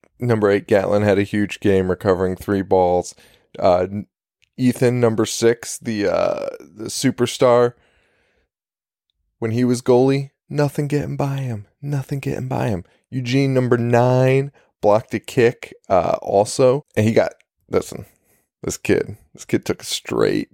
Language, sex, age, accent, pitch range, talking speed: English, male, 20-39, American, 95-125 Hz, 145 wpm